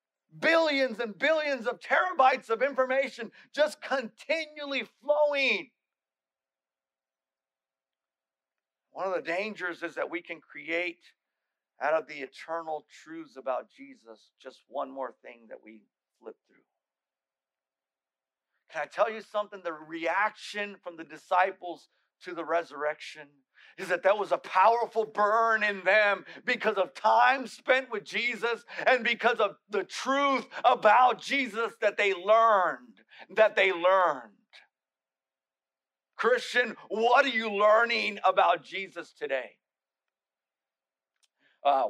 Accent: American